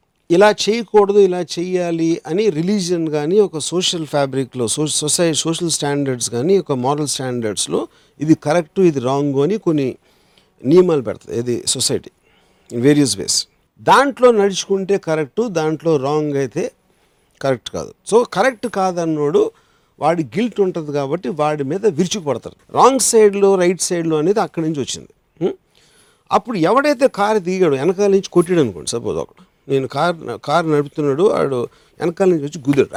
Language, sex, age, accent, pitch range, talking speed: Telugu, male, 50-69, native, 150-210 Hz, 135 wpm